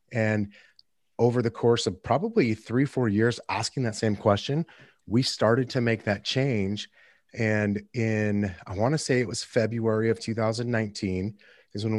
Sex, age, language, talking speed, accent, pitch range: male, 30-49, English, 155 wpm, American, 95-115 Hz